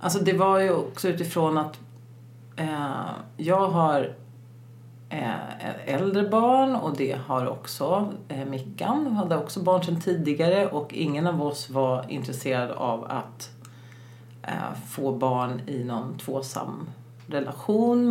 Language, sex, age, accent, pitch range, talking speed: Swedish, female, 40-59, native, 130-190 Hz, 115 wpm